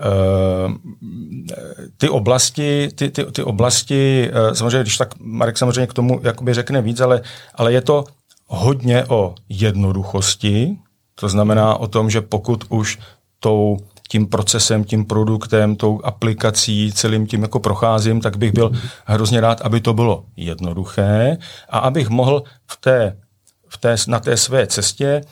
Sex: male